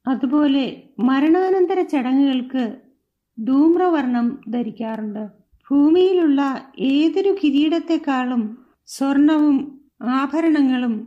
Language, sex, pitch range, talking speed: Malayalam, female, 240-290 Hz, 55 wpm